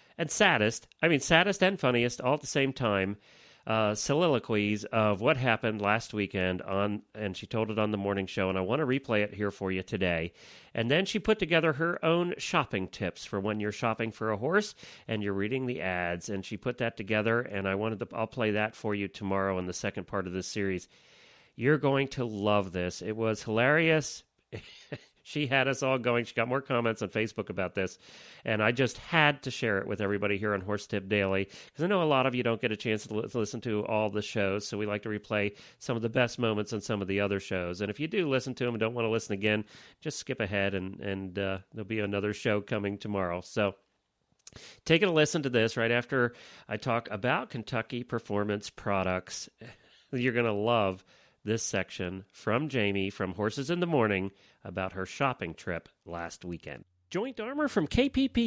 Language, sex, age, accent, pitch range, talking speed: English, male, 40-59, American, 100-135 Hz, 220 wpm